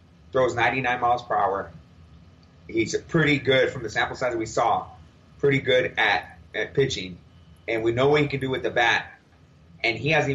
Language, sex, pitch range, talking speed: English, male, 105-135 Hz, 185 wpm